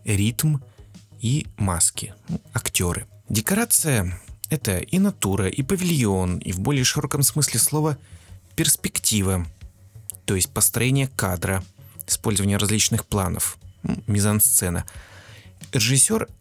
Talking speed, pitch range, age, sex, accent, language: 95 wpm, 95-130 Hz, 30-49, male, native, Russian